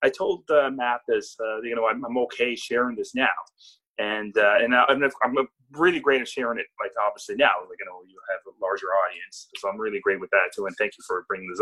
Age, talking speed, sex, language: 30-49, 250 wpm, male, English